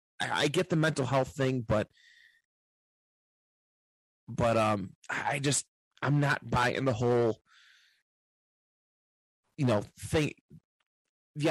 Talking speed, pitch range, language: 105 wpm, 105-135 Hz, English